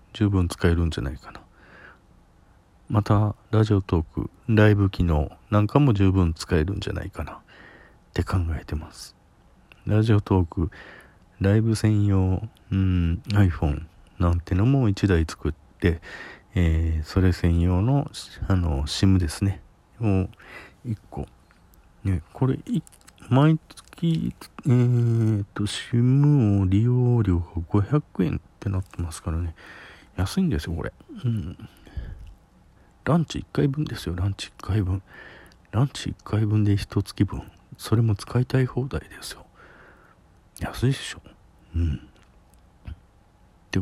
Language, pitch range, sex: Japanese, 85-110 Hz, male